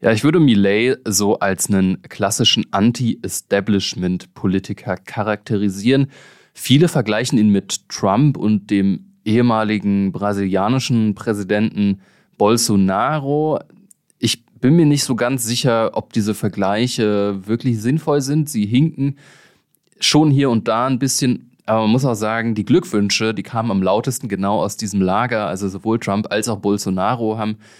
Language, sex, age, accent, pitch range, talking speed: German, male, 20-39, German, 100-130 Hz, 140 wpm